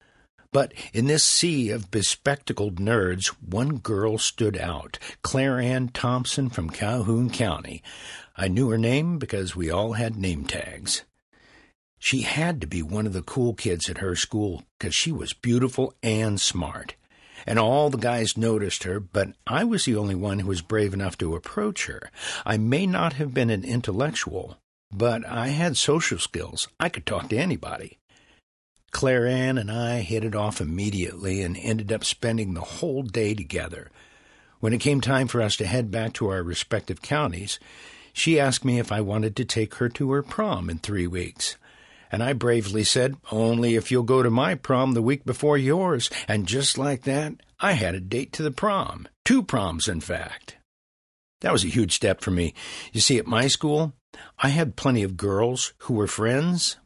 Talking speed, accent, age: 185 wpm, American, 60-79